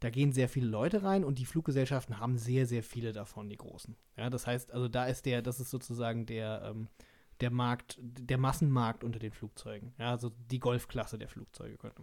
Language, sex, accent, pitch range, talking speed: German, male, German, 120-145 Hz, 210 wpm